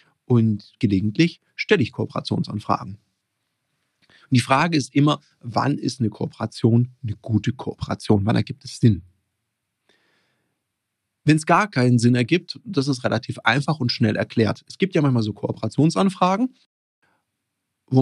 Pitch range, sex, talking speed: 110-155 Hz, male, 135 wpm